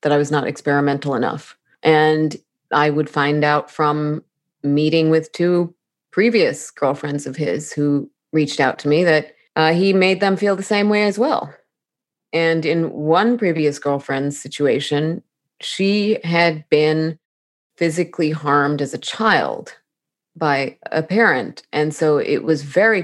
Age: 30-49